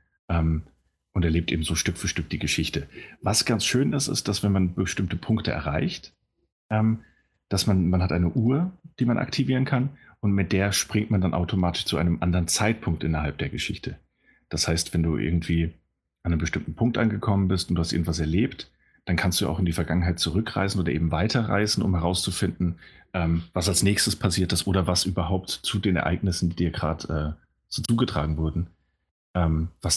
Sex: male